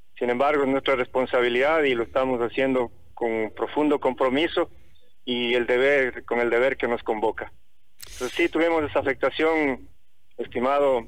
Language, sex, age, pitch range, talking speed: Spanish, male, 50-69, 130-165 Hz, 145 wpm